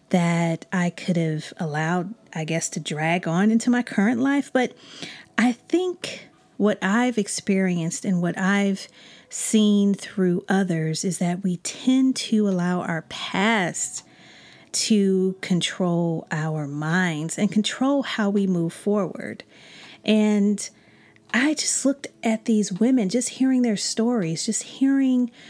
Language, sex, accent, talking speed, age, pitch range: English, female, American, 135 wpm, 40-59, 175-225 Hz